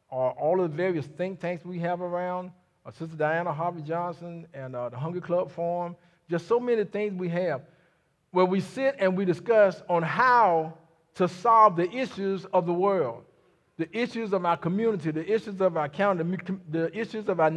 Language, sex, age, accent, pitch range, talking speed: English, male, 50-69, American, 160-210 Hz, 190 wpm